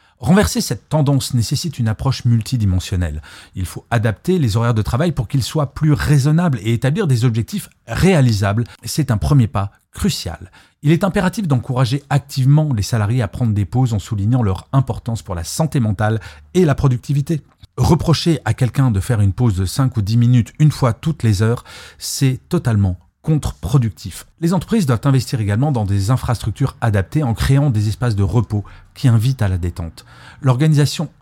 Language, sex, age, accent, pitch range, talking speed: French, male, 40-59, French, 105-140 Hz, 175 wpm